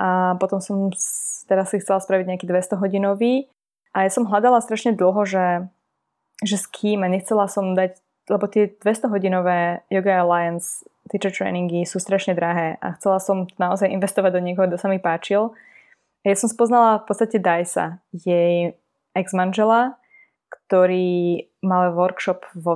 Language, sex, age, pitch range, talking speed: Slovak, female, 20-39, 180-205 Hz, 150 wpm